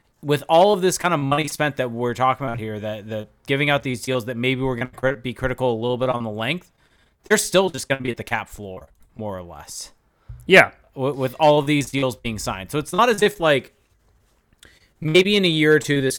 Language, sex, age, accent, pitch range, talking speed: English, male, 20-39, American, 115-150 Hz, 245 wpm